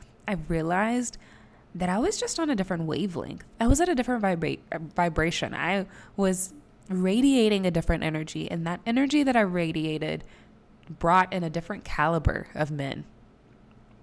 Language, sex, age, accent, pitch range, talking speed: English, female, 20-39, American, 160-215 Hz, 150 wpm